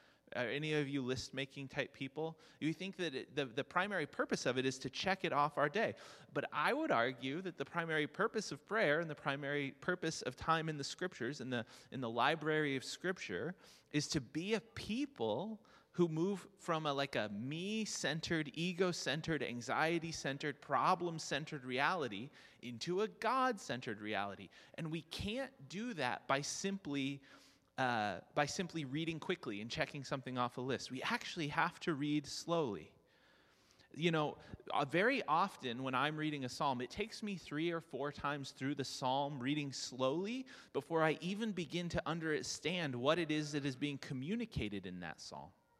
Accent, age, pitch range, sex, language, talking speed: American, 30-49, 135-180 Hz, male, English, 170 wpm